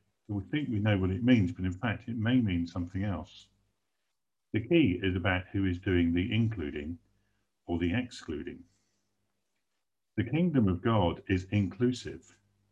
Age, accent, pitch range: 50-69, British, 90-105 Hz